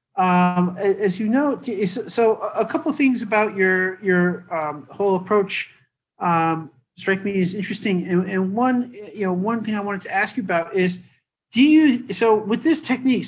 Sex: male